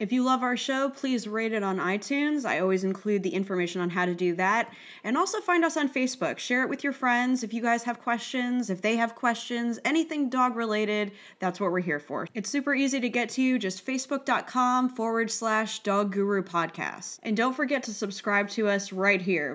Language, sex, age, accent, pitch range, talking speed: English, female, 20-39, American, 190-250 Hz, 215 wpm